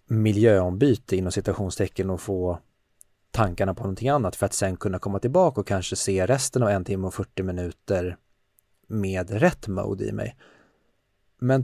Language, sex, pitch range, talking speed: Swedish, male, 100-125 Hz, 160 wpm